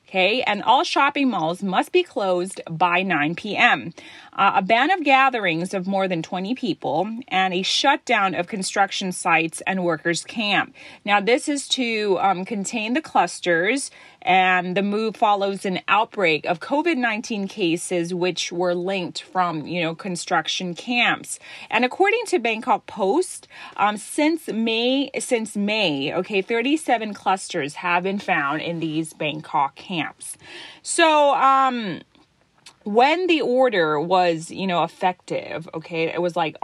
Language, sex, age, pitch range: Thai, female, 30-49, 180-250 Hz